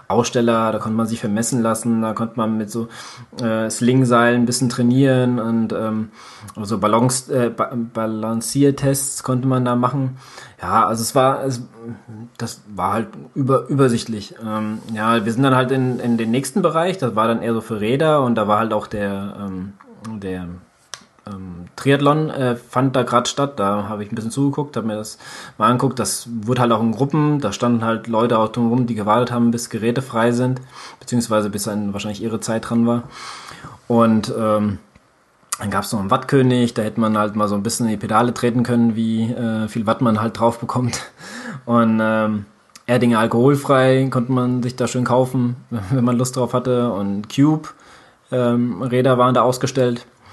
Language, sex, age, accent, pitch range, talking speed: German, male, 20-39, German, 110-125 Hz, 190 wpm